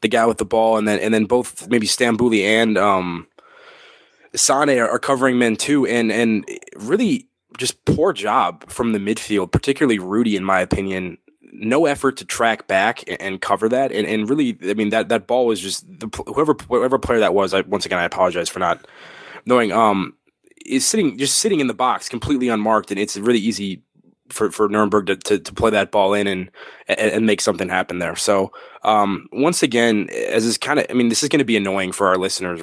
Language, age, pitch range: English, 20-39, 100-125 Hz